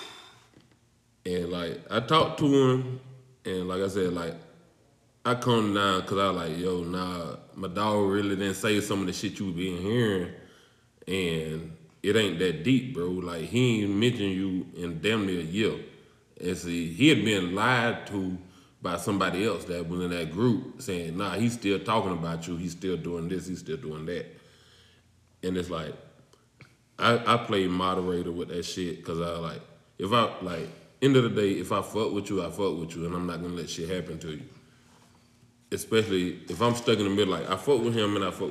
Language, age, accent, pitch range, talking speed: English, 20-39, American, 90-115 Hz, 205 wpm